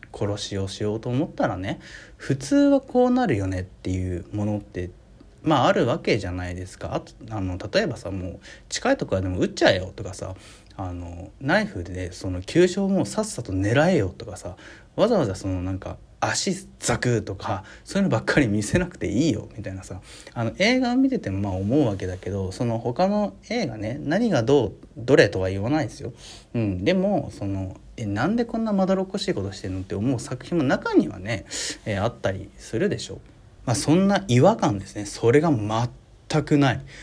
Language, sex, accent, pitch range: Japanese, male, native, 100-160 Hz